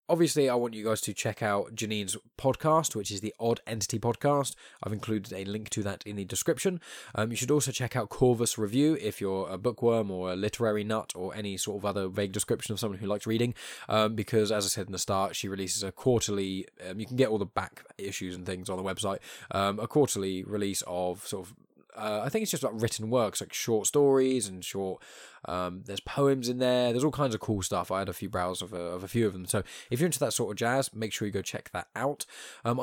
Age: 10-29